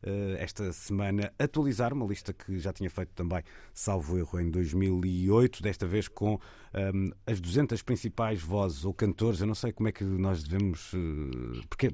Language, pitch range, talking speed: Portuguese, 90-110 Hz, 165 wpm